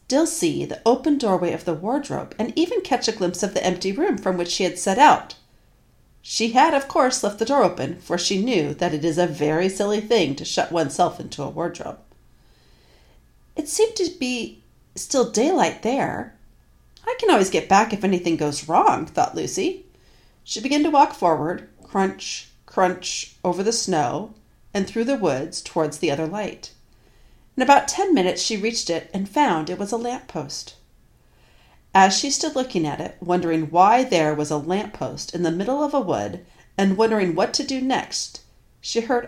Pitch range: 175-260 Hz